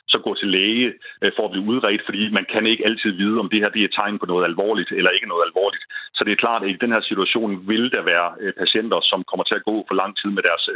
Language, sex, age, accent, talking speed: Danish, male, 40-59, native, 285 wpm